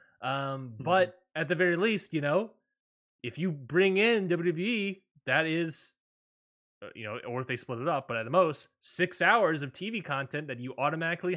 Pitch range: 115-175 Hz